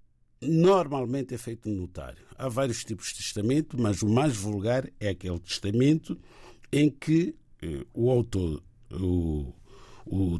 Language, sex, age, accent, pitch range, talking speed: Portuguese, male, 50-69, Brazilian, 105-140 Hz, 125 wpm